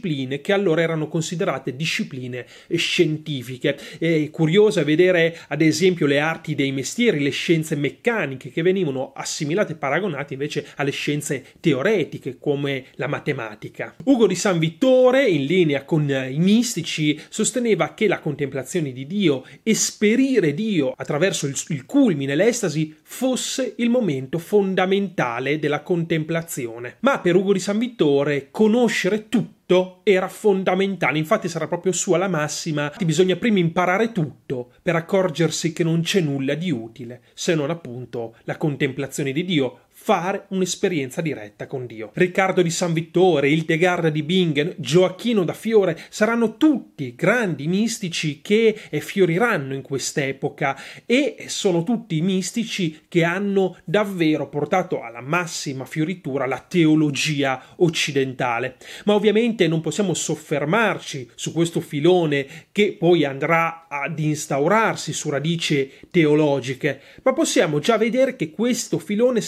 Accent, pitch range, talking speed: native, 145-195 Hz, 135 wpm